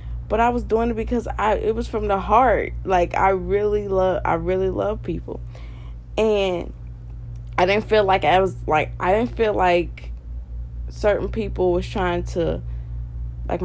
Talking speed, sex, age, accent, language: 160 wpm, female, 20-39, American, English